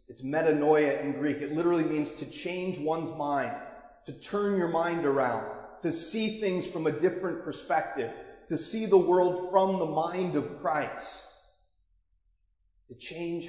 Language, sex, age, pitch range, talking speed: English, male, 40-59, 135-180 Hz, 150 wpm